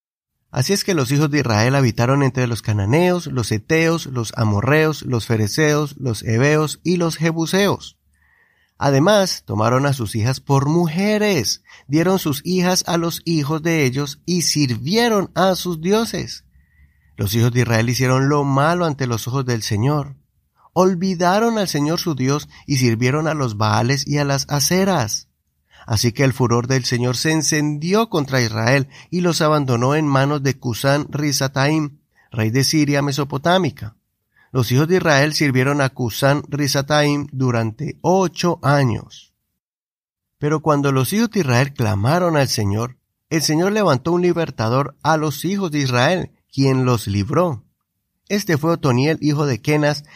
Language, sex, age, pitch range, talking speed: Spanish, male, 30-49, 120-160 Hz, 155 wpm